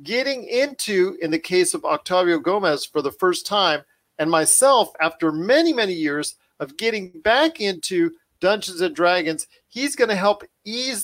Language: English